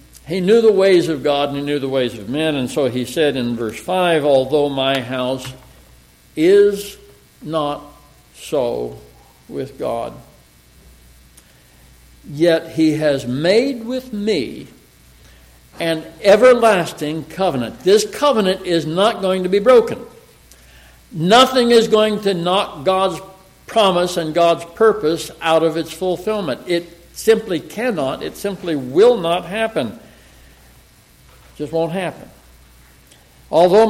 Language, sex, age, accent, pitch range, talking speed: English, male, 60-79, American, 150-215 Hz, 125 wpm